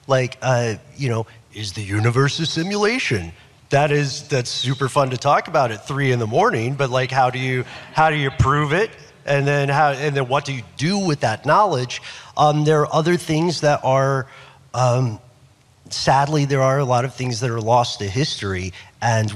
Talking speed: 200 wpm